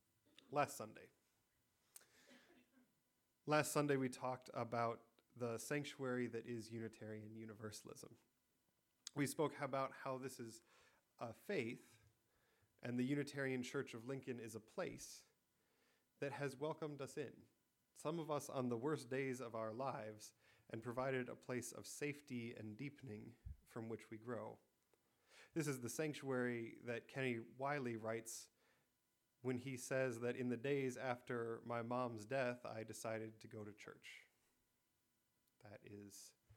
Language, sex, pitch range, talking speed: English, male, 110-135 Hz, 140 wpm